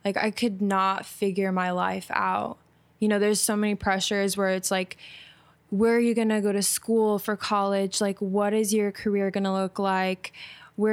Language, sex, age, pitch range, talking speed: English, female, 20-39, 185-210 Hz, 205 wpm